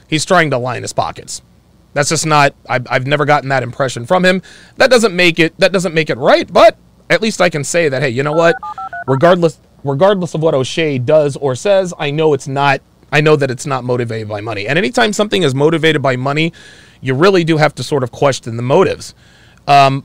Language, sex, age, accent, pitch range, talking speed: English, male, 30-49, American, 130-170 Hz, 215 wpm